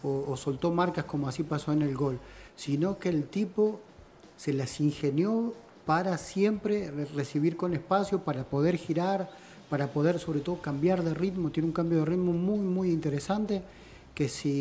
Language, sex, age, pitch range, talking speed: Spanish, male, 40-59, 145-185 Hz, 170 wpm